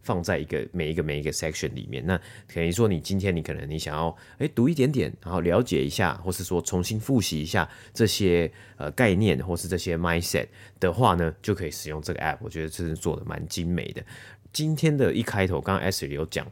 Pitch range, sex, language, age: 80-110 Hz, male, Chinese, 30-49